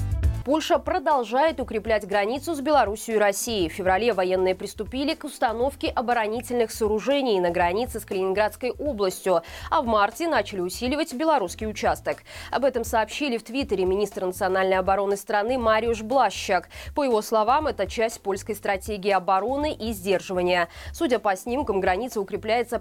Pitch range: 195-270 Hz